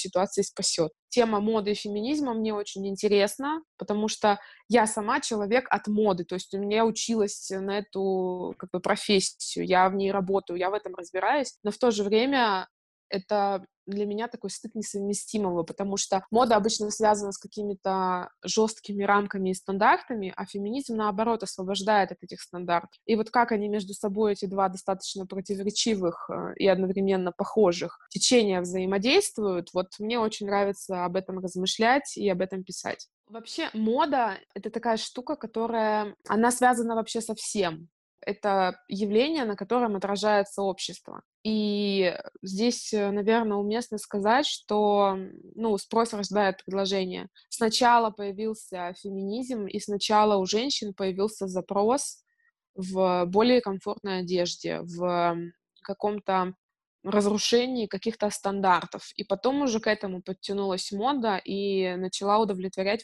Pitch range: 190-220 Hz